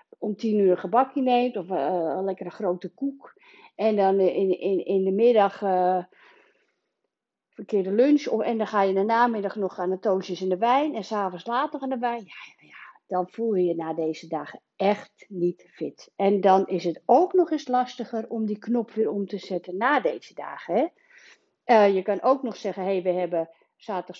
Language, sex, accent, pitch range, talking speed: Dutch, female, Dutch, 180-235 Hz, 210 wpm